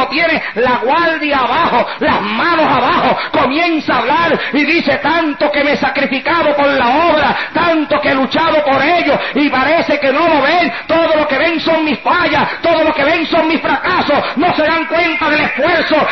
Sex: male